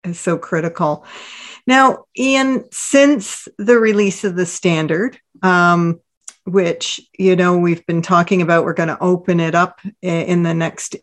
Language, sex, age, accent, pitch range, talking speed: English, female, 50-69, American, 175-215 Hz, 150 wpm